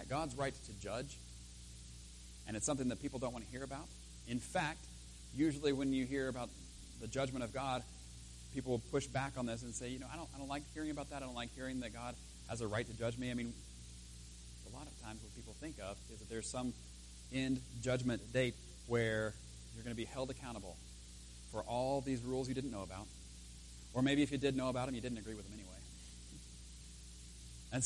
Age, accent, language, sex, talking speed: 40-59, American, English, male, 220 wpm